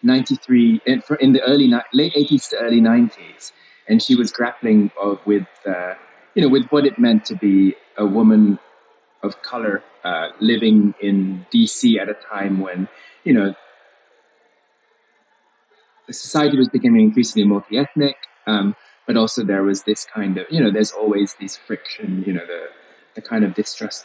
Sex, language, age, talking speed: male, English, 20-39, 160 wpm